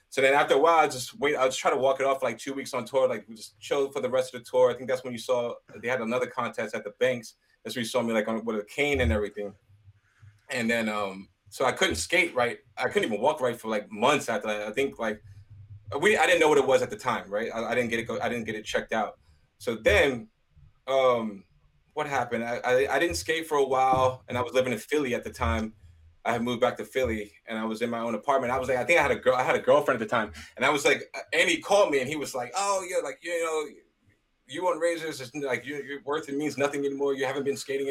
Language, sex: English, male